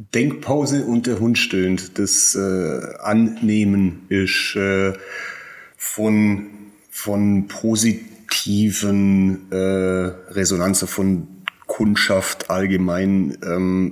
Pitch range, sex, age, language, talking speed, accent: 95-105 Hz, male, 30-49, German, 80 wpm, German